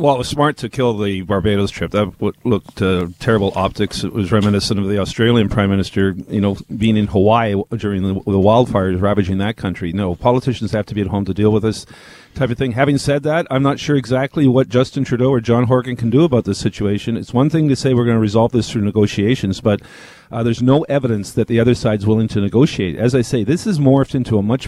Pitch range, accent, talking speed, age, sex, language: 105-130 Hz, American, 240 wpm, 40-59, male, English